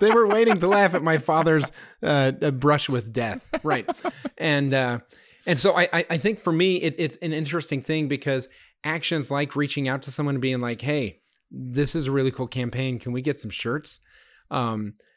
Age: 30-49